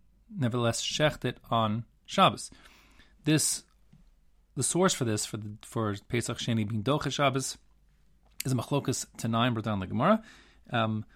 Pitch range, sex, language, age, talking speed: 105-135 Hz, male, English, 30-49, 150 wpm